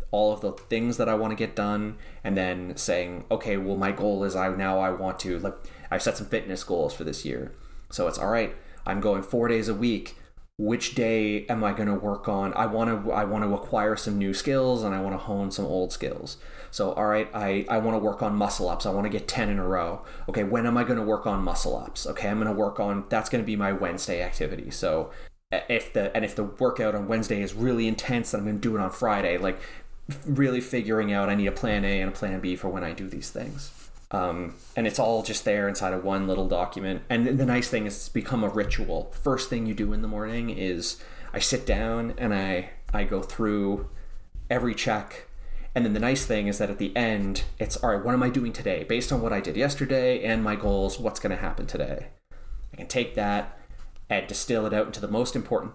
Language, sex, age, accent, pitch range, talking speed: English, male, 20-39, American, 100-110 Hz, 250 wpm